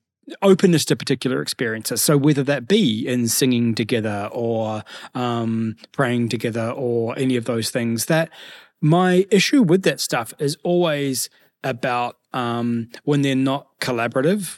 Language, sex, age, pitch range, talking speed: English, male, 20-39, 125-155 Hz, 140 wpm